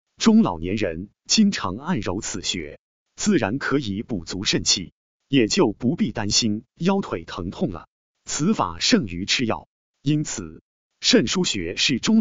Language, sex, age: Chinese, male, 30-49